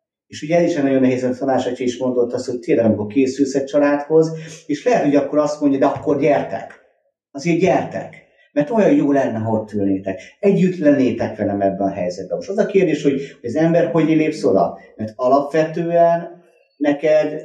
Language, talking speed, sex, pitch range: Hungarian, 180 wpm, male, 115-160 Hz